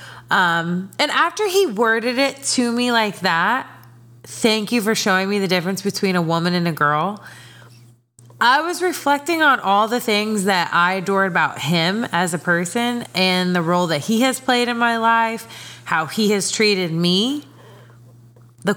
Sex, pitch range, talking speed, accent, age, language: female, 180-245 Hz, 175 wpm, American, 20-39, English